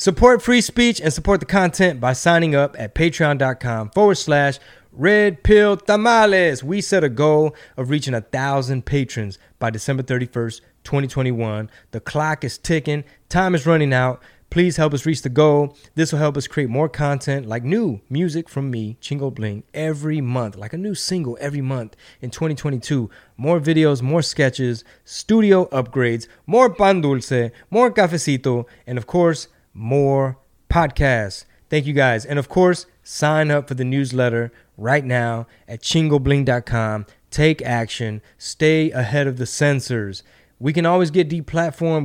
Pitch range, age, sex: 120-155 Hz, 20-39, male